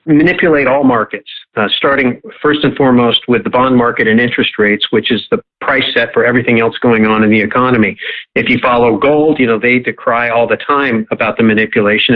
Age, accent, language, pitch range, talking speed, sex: 50-69, American, English, 110-130 Hz, 205 wpm, male